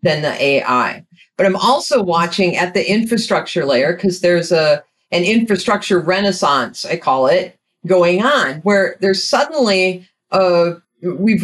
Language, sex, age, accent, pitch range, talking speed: English, female, 40-59, American, 170-200 Hz, 140 wpm